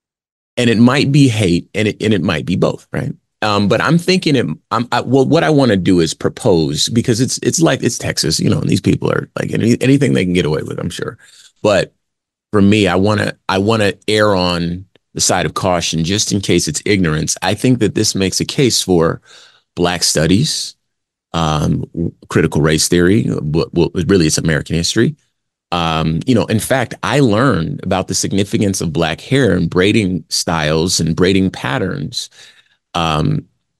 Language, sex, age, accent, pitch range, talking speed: English, male, 30-49, American, 85-110 Hz, 195 wpm